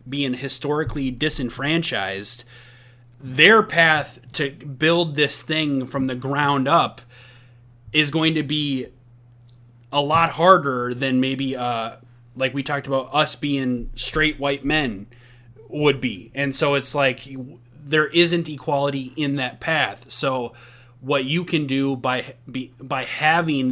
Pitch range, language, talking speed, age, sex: 120-140 Hz, English, 135 wpm, 30-49, male